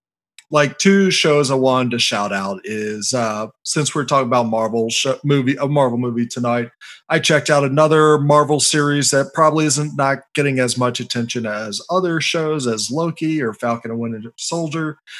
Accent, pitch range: American, 120-165 Hz